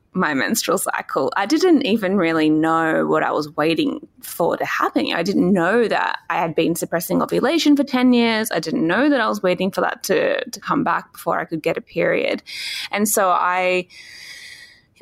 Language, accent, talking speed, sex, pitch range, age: English, Australian, 200 wpm, female, 170-250 Hz, 20-39